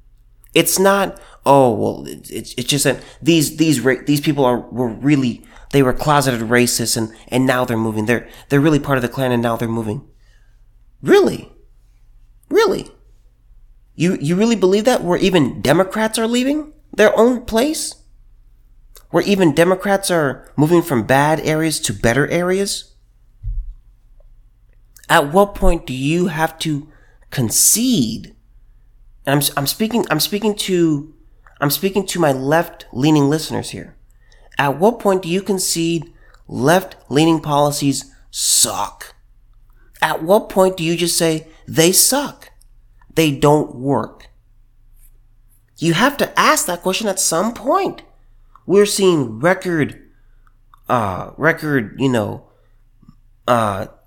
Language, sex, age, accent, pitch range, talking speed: English, male, 30-49, American, 115-175 Hz, 135 wpm